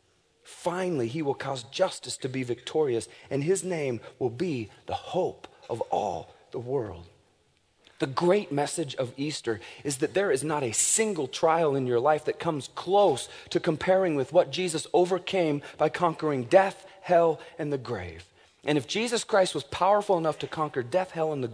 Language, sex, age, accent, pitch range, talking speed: English, male, 30-49, American, 135-185 Hz, 180 wpm